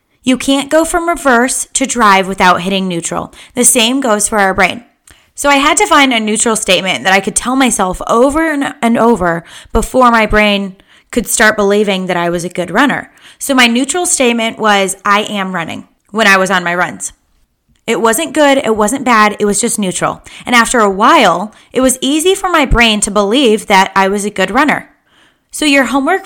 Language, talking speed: English, 205 wpm